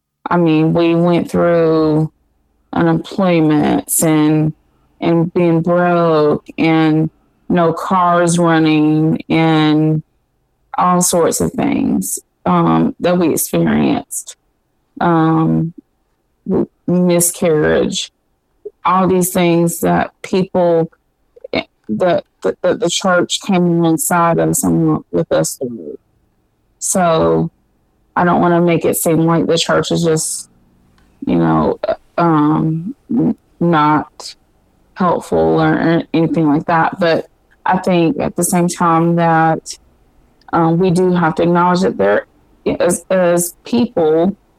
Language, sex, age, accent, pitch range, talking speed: English, female, 30-49, American, 150-175 Hz, 110 wpm